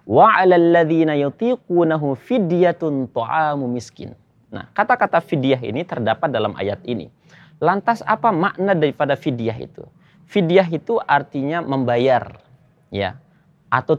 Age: 30-49